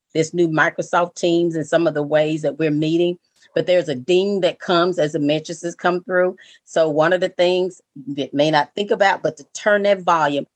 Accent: American